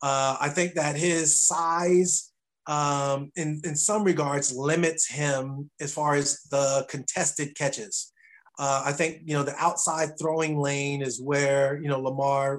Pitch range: 130-150 Hz